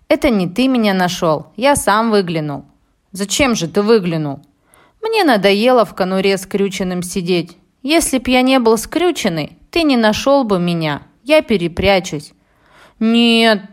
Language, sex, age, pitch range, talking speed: Russian, female, 20-39, 175-255 Hz, 140 wpm